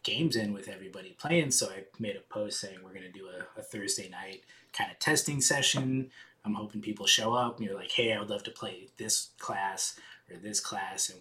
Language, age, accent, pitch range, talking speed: English, 20-39, American, 100-135 Hz, 230 wpm